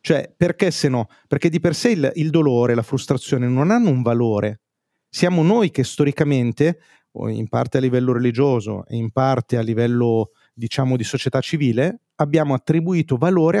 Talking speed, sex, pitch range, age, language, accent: 170 wpm, male, 125-160 Hz, 30-49, Italian, native